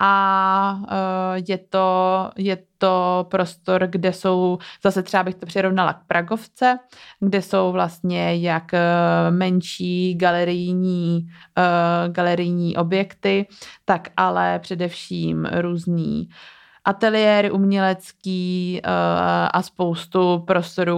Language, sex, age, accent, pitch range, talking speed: Czech, female, 20-39, native, 175-185 Hz, 90 wpm